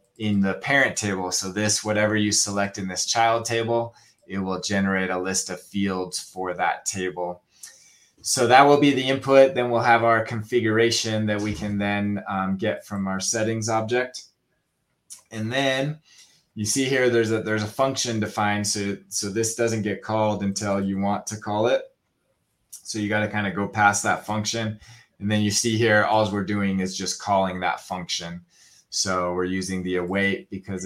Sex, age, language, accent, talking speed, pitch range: male, 20-39, English, American, 185 wpm, 100-115 Hz